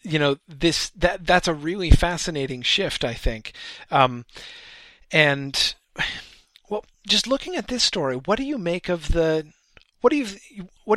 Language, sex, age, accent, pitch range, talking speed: English, male, 40-59, American, 130-175 Hz, 160 wpm